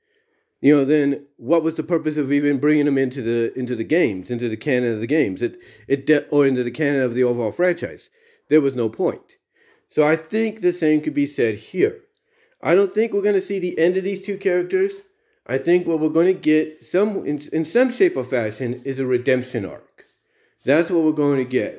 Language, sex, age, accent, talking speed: English, male, 40-59, American, 225 wpm